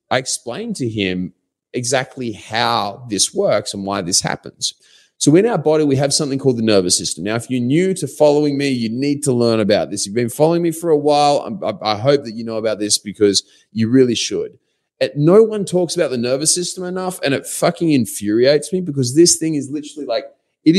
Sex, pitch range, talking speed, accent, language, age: male, 115-155 Hz, 215 wpm, Australian, English, 30-49